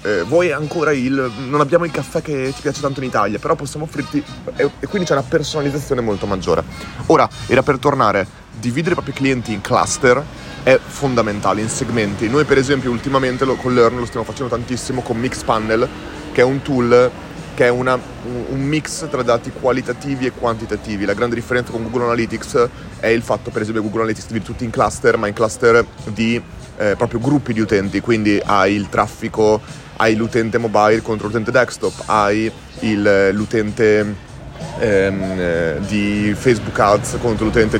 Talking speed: 175 wpm